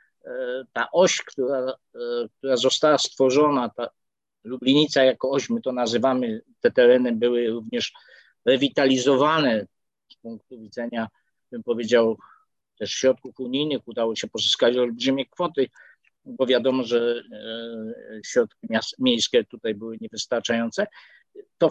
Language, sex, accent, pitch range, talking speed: Polish, male, native, 125-180 Hz, 115 wpm